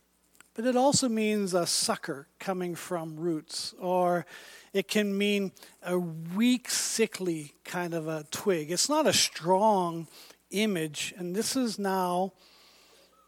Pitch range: 175-230 Hz